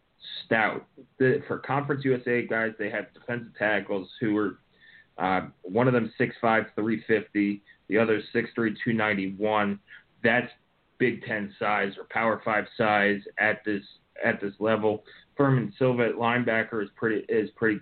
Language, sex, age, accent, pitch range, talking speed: English, male, 30-49, American, 105-115 Hz, 140 wpm